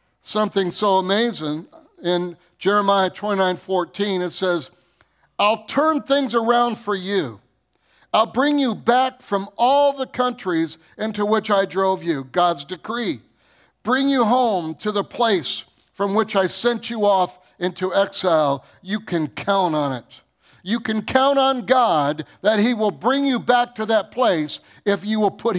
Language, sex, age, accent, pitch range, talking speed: English, male, 50-69, American, 180-240 Hz, 155 wpm